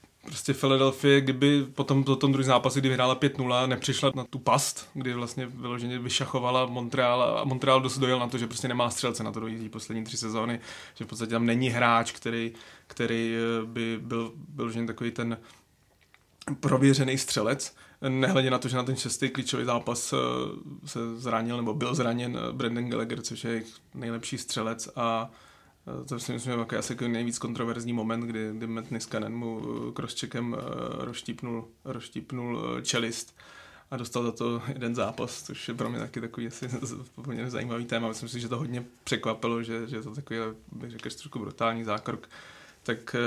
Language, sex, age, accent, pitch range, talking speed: Czech, male, 30-49, native, 115-130 Hz, 165 wpm